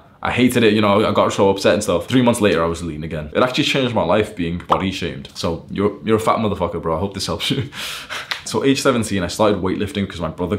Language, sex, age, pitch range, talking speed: English, male, 20-39, 90-115 Hz, 265 wpm